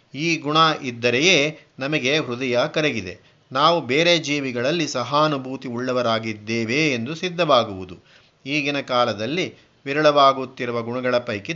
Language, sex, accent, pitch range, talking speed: Kannada, male, native, 120-155 Hz, 95 wpm